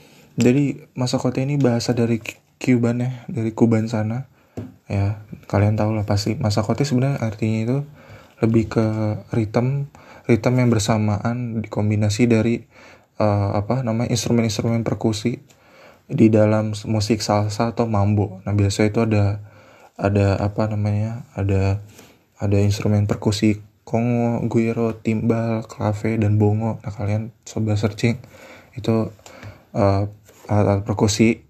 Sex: male